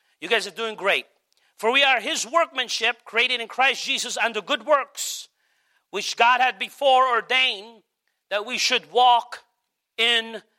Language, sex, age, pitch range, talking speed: English, male, 40-59, 215-260 Hz, 155 wpm